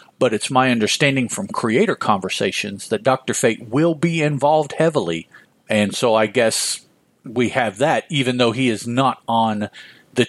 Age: 50-69